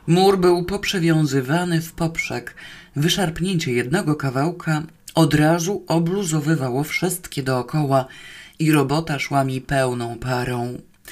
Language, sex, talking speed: Polish, female, 105 wpm